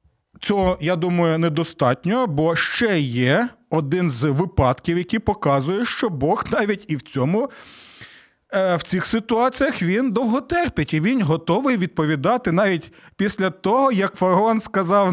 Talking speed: 130 wpm